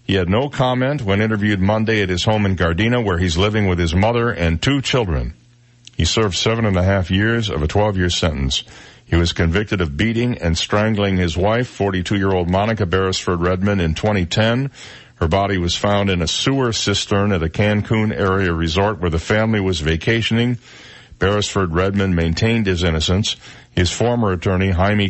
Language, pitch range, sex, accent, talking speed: English, 90-115 Hz, male, American, 175 wpm